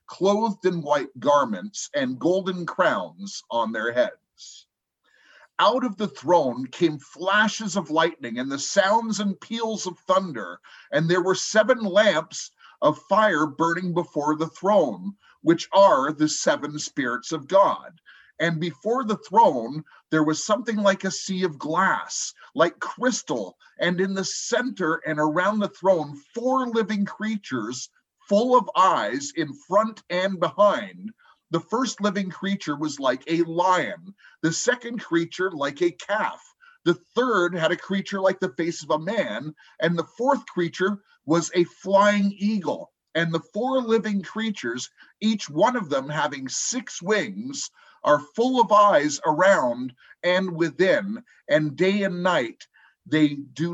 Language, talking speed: English, 150 wpm